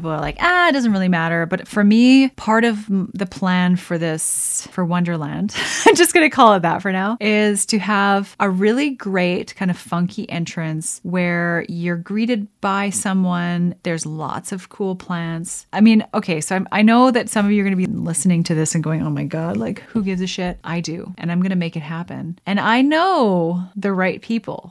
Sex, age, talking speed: female, 30-49, 210 wpm